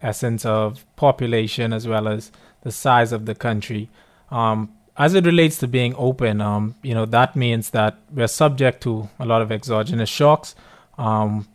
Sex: male